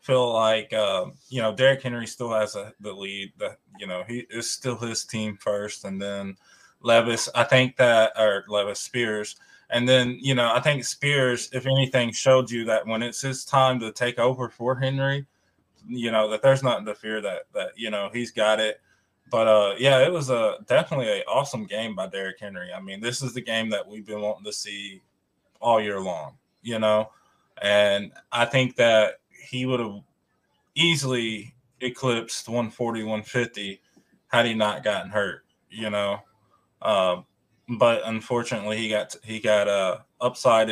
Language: English